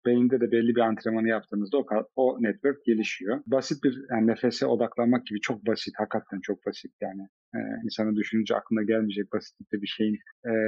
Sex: male